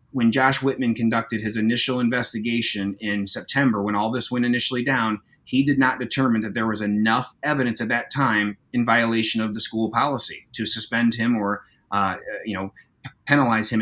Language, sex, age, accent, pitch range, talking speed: English, male, 30-49, American, 110-135 Hz, 180 wpm